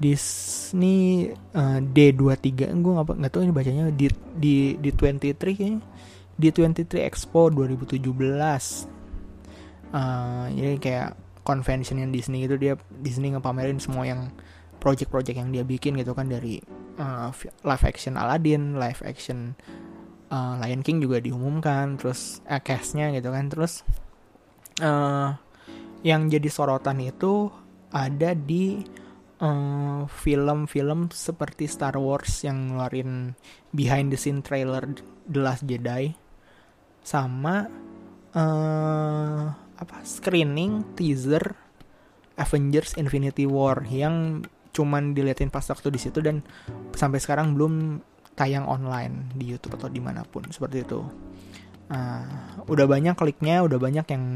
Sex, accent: male, native